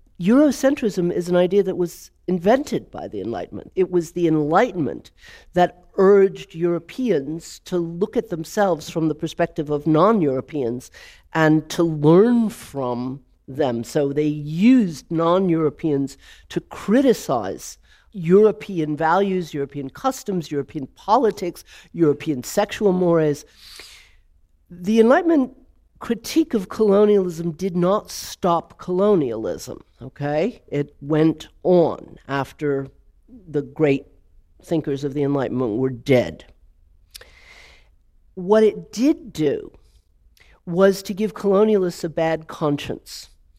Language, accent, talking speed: English, American, 110 wpm